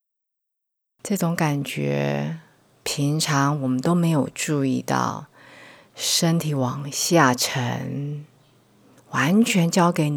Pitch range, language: 130-175 Hz, Chinese